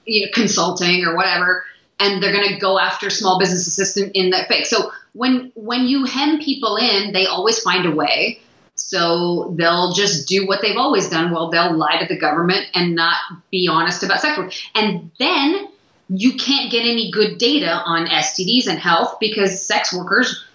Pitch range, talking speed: 180-220 Hz, 190 wpm